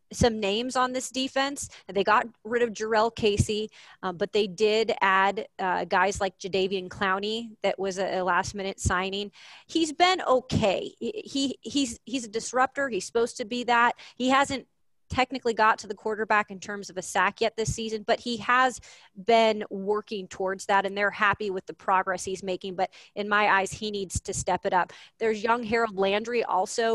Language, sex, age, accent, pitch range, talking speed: English, female, 30-49, American, 195-230 Hz, 195 wpm